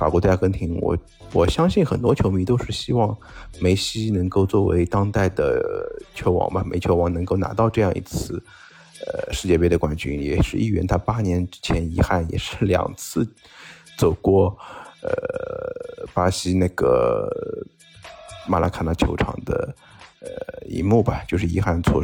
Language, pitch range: Chinese, 90-110 Hz